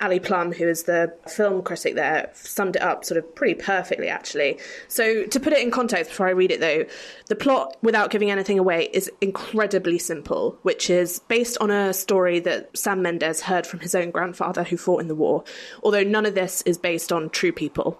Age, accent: 20-39, British